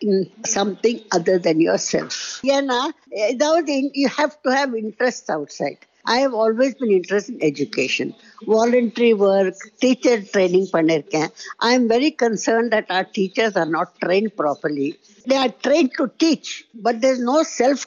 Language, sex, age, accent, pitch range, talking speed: Tamil, female, 60-79, native, 195-265 Hz, 160 wpm